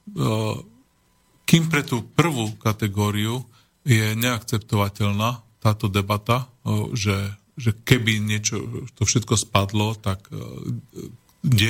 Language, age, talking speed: Slovak, 40-59, 95 wpm